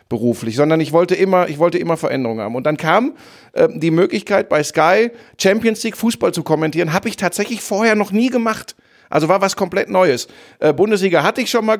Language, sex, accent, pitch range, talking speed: German, male, German, 150-205 Hz, 210 wpm